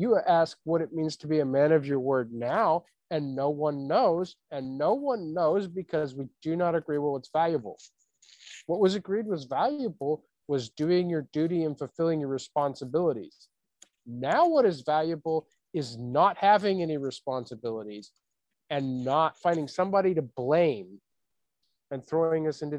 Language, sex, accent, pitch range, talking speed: English, male, American, 135-165 Hz, 160 wpm